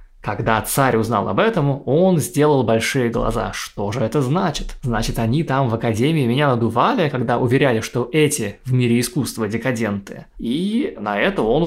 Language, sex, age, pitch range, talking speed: Russian, male, 20-39, 110-135 Hz, 165 wpm